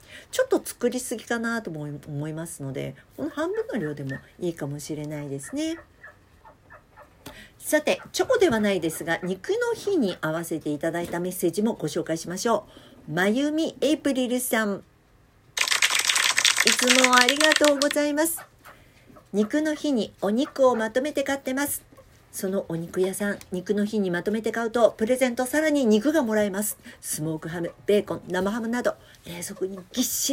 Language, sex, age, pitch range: Japanese, female, 50-69, 175-270 Hz